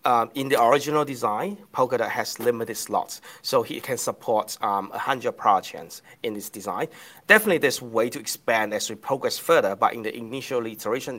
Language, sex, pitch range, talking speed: English, male, 115-160 Hz, 190 wpm